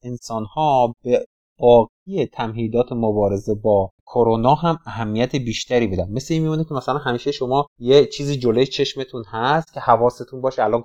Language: Persian